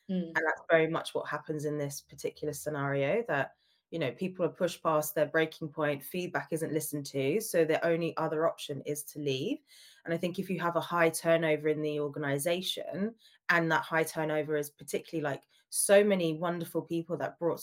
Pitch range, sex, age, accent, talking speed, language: 150-175 Hz, female, 20-39, British, 195 wpm, English